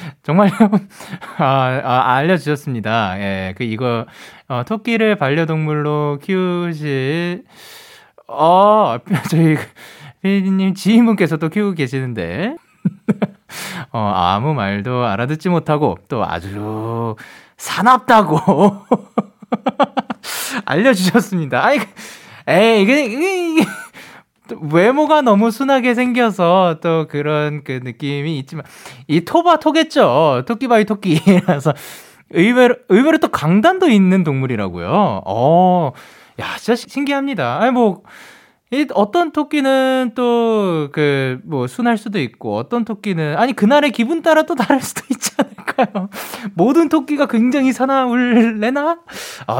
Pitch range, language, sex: 150-245 Hz, Korean, male